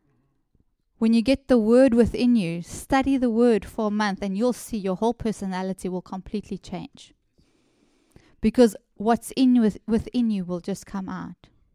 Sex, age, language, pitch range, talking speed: female, 20-39, English, 195-240 Hz, 170 wpm